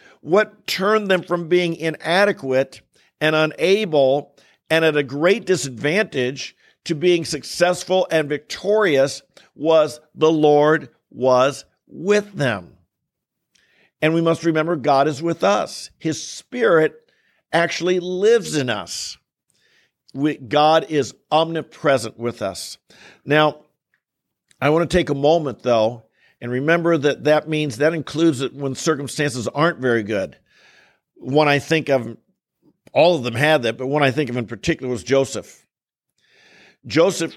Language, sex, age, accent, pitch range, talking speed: English, male, 50-69, American, 135-165 Hz, 135 wpm